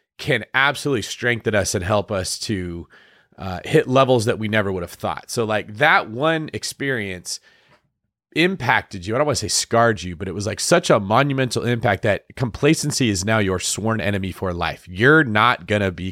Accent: American